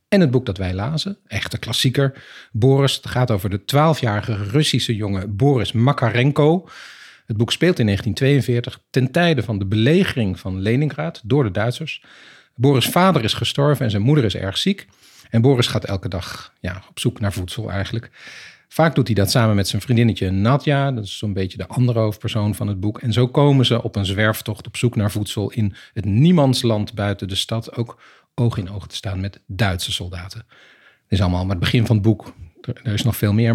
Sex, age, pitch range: male, 40-59, 105-135 Hz